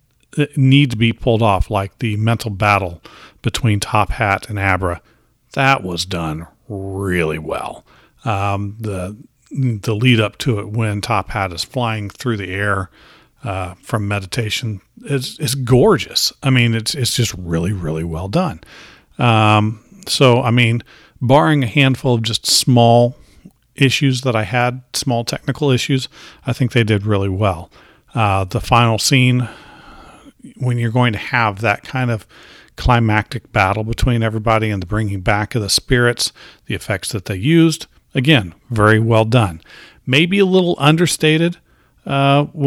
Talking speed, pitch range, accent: 150 wpm, 100-135 Hz, American